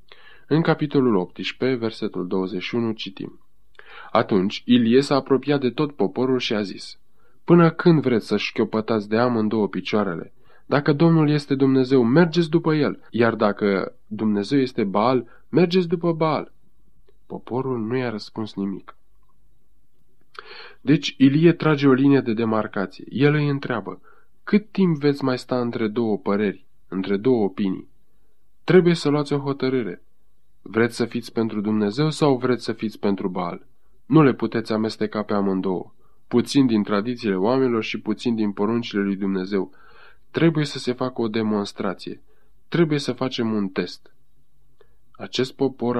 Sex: male